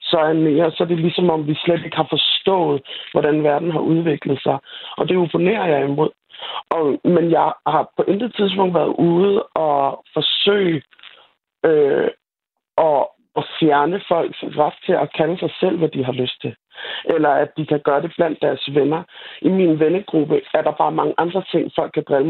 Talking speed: 180 wpm